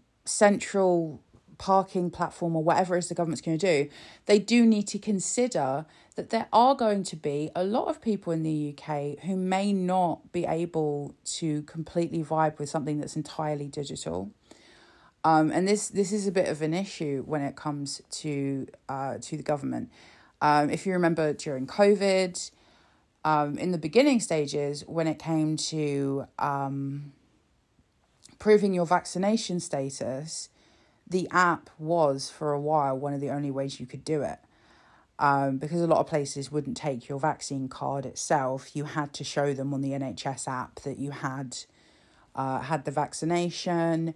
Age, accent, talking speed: 30-49, British, 165 wpm